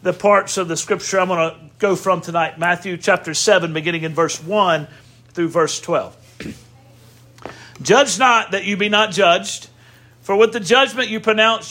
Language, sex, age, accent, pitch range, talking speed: English, male, 50-69, American, 160-210 Hz, 175 wpm